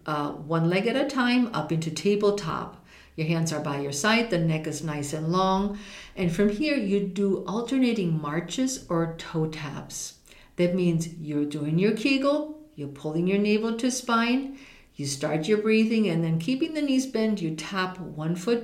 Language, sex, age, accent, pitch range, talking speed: English, female, 50-69, American, 155-225 Hz, 185 wpm